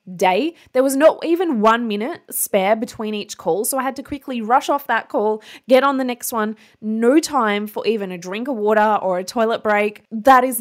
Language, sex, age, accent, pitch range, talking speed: English, female, 20-39, Australian, 205-255 Hz, 220 wpm